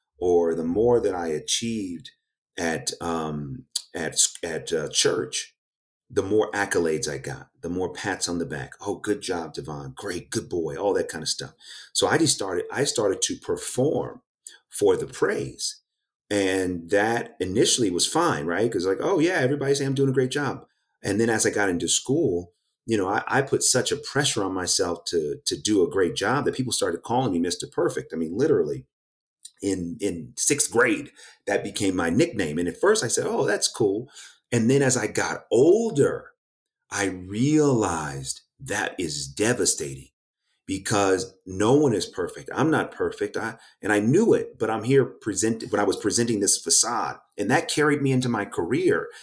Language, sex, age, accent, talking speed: English, male, 40-59, American, 185 wpm